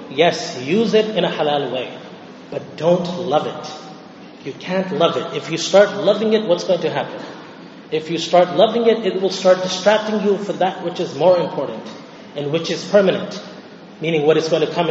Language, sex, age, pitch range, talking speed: English, male, 30-49, 155-200 Hz, 200 wpm